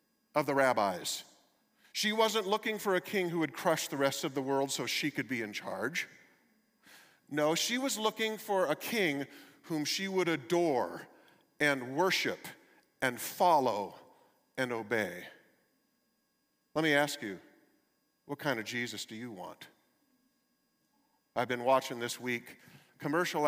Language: English